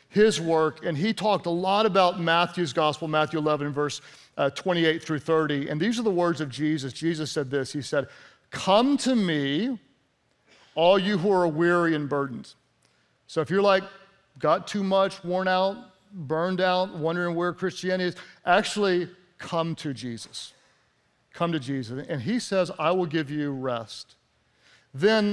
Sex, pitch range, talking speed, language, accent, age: male, 165-210 Hz, 165 wpm, English, American, 50-69